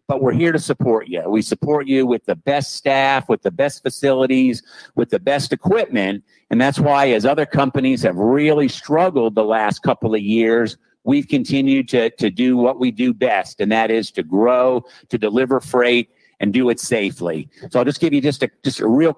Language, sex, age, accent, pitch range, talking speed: English, male, 50-69, American, 125-150 Hz, 205 wpm